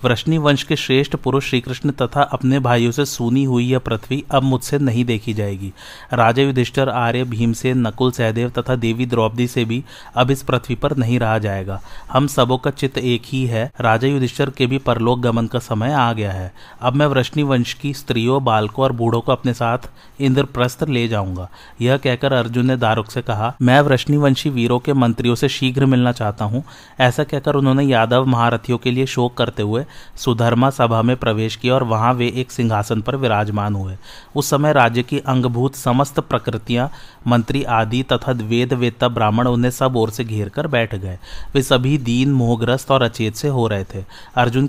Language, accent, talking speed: Hindi, native, 150 wpm